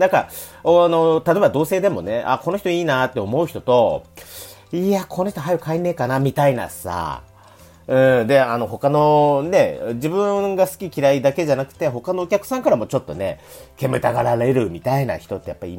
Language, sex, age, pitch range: Japanese, male, 40-59, 110-185 Hz